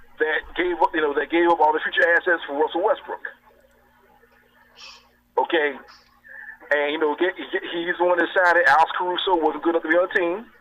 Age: 40-59